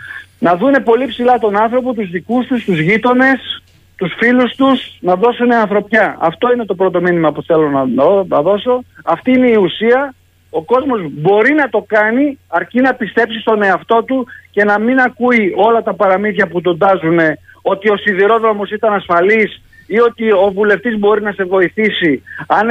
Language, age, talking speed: Greek, 50-69, 170 wpm